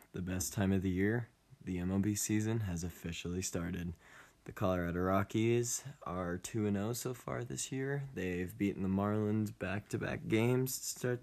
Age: 20-39